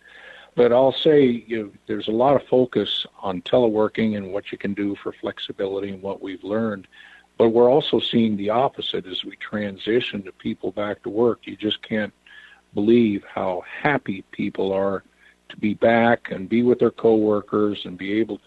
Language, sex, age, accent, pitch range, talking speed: English, male, 50-69, American, 100-115 Hz, 180 wpm